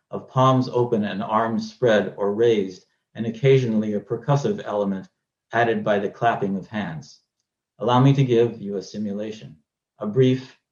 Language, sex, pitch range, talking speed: English, male, 110-145 Hz, 155 wpm